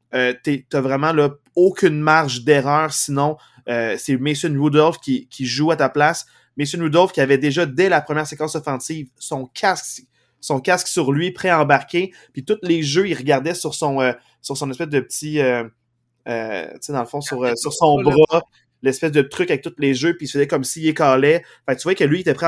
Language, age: French, 20-39